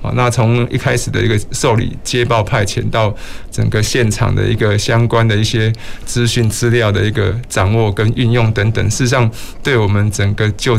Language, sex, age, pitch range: Chinese, male, 20-39, 105-120 Hz